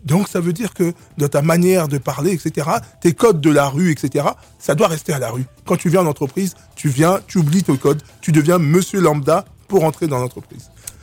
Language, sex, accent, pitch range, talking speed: French, male, French, 130-175 Hz, 230 wpm